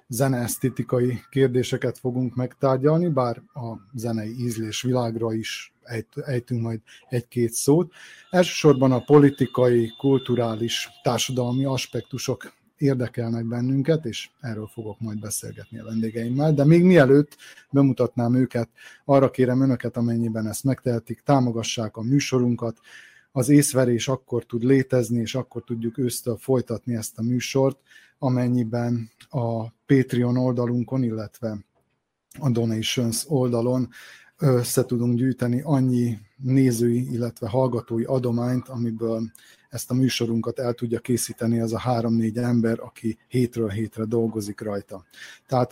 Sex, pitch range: male, 115-130 Hz